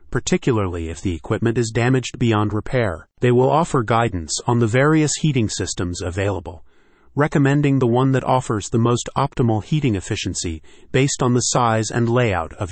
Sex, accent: male, American